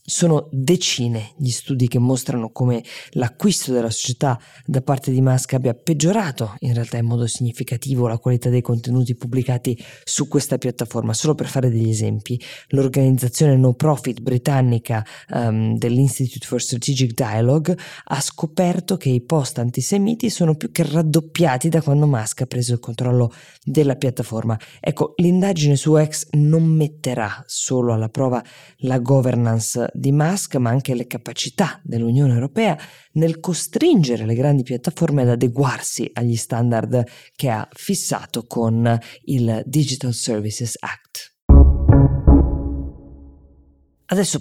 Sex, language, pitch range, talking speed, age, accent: female, Italian, 120-150 Hz, 135 wpm, 20-39, native